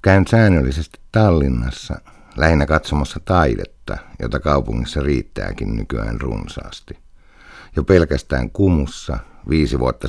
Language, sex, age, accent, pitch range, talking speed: Finnish, male, 60-79, native, 65-80 Hz, 95 wpm